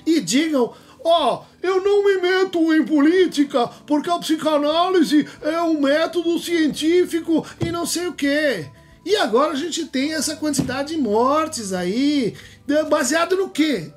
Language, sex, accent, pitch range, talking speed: Portuguese, male, Brazilian, 215-310 Hz, 150 wpm